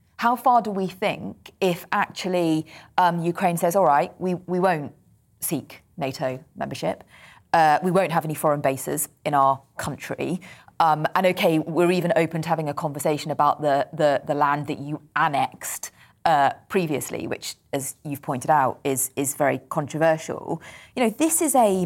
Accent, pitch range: British, 155-210 Hz